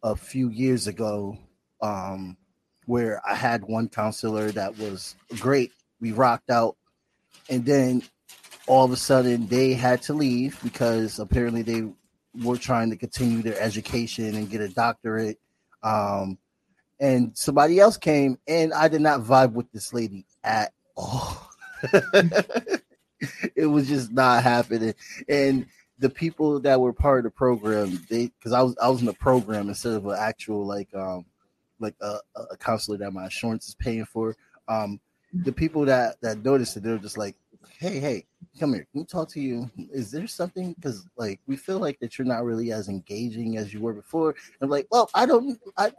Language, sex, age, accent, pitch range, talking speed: English, male, 20-39, American, 110-140 Hz, 180 wpm